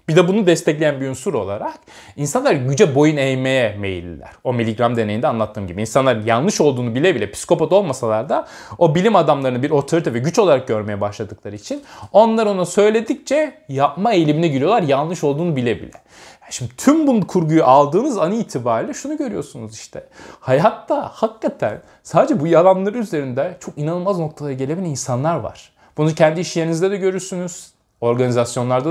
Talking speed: 160 wpm